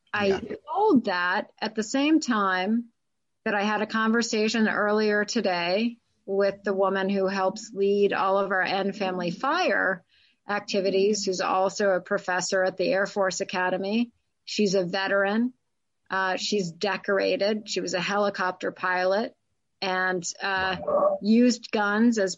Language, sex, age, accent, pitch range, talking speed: English, female, 40-59, American, 195-230 Hz, 140 wpm